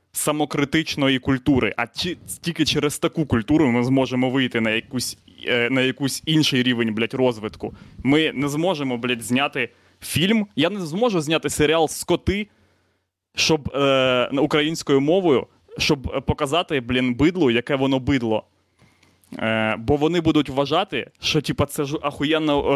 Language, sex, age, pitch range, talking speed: Ukrainian, male, 20-39, 120-155 Hz, 130 wpm